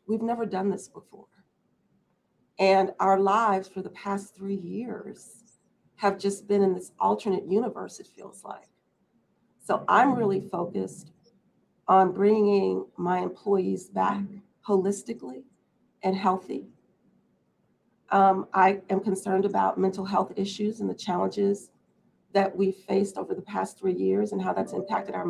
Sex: female